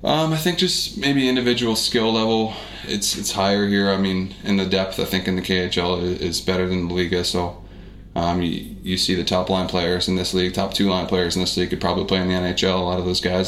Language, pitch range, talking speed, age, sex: Finnish, 90-95 Hz, 255 wpm, 20-39, male